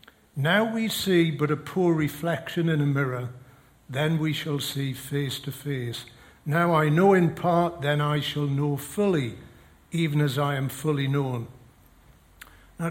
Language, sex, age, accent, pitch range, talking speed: English, male, 60-79, British, 130-160 Hz, 160 wpm